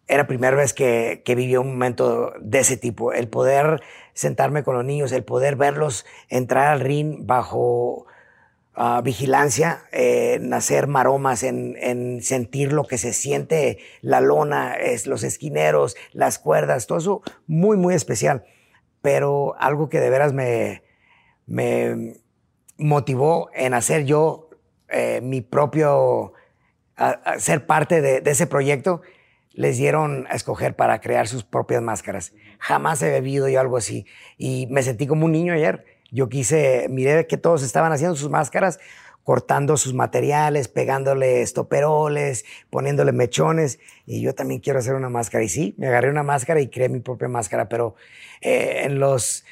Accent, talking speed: Mexican, 160 wpm